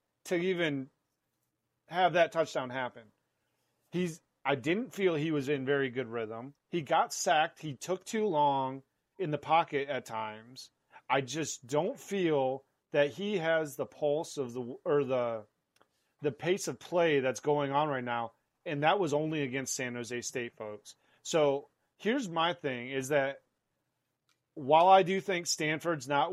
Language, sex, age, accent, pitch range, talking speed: English, male, 30-49, American, 130-180 Hz, 160 wpm